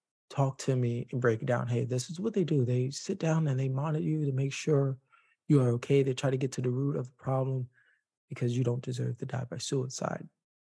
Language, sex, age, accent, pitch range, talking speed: English, male, 20-39, American, 120-140 Hz, 245 wpm